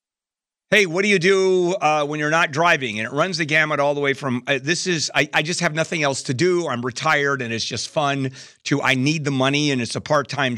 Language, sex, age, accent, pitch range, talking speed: English, male, 50-69, American, 120-160 Hz, 260 wpm